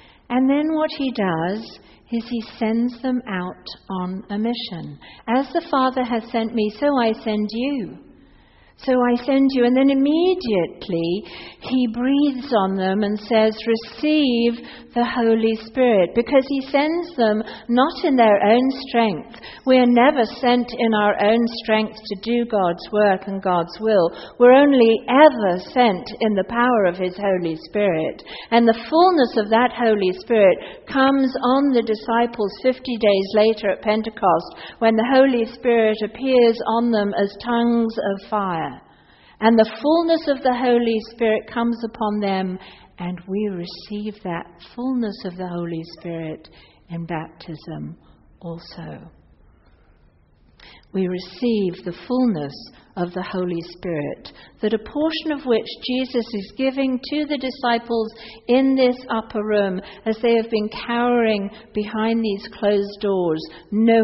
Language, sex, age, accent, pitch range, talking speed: English, female, 50-69, British, 195-245 Hz, 145 wpm